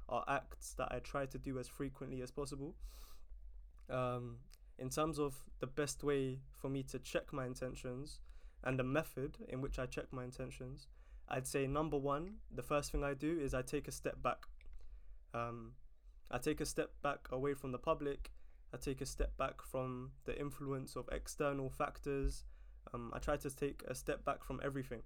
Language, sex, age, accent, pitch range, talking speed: English, male, 20-39, British, 120-140 Hz, 190 wpm